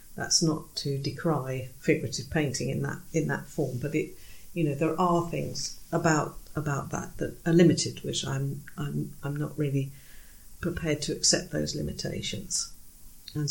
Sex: female